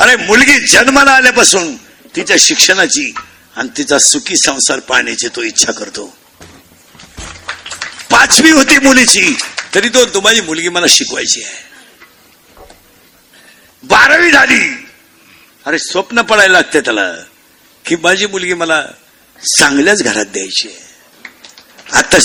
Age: 50-69